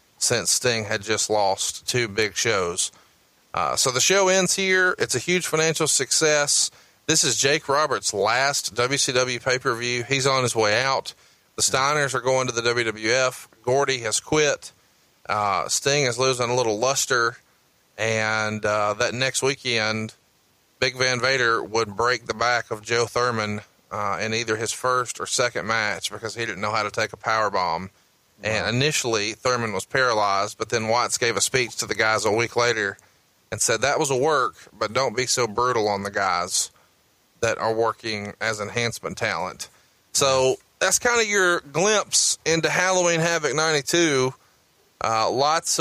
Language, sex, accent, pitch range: English, male, American, 110-145 Hz